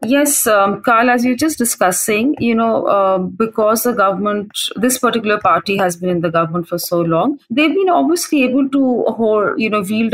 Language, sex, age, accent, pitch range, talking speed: English, female, 30-49, Indian, 165-220 Hz, 200 wpm